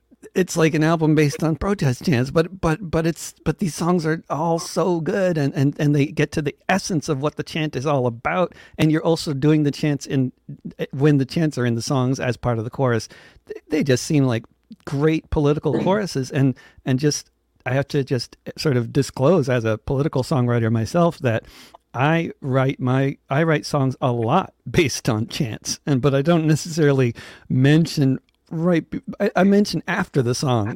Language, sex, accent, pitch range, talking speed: English, male, American, 125-160 Hz, 195 wpm